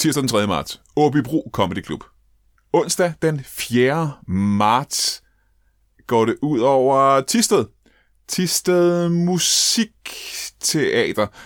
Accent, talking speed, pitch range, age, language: native, 100 wpm, 100-135 Hz, 30-49, Danish